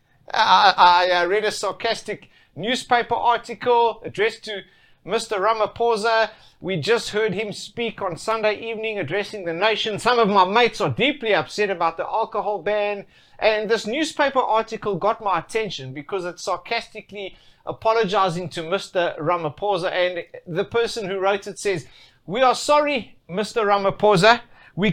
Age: 60-79